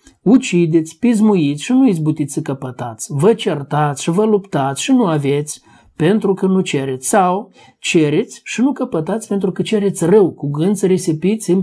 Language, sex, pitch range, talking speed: Romanian, male, 150-195 Hz, 170 wpm